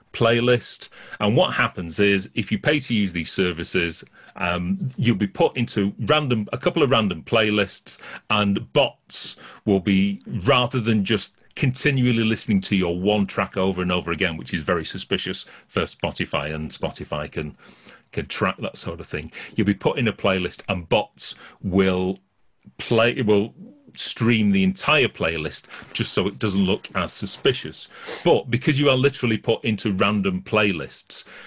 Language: English